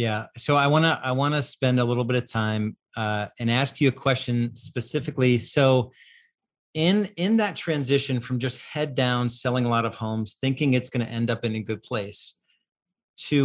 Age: 40-59